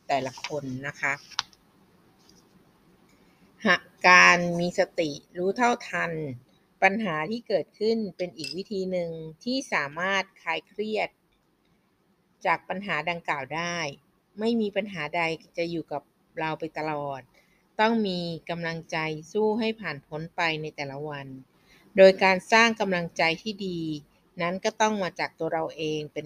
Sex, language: female, Thai